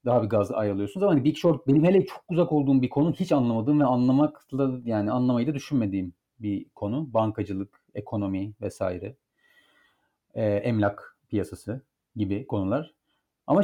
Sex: male